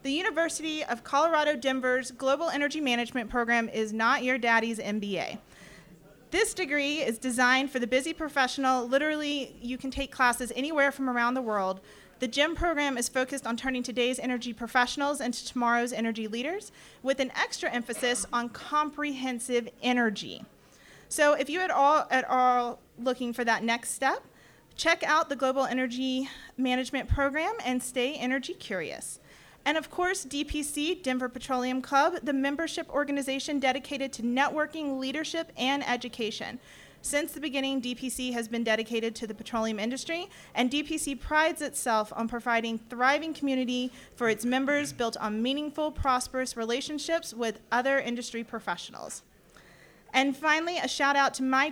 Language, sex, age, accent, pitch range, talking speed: English, female, 30-49, American, 245-290 Hz, 150 wpm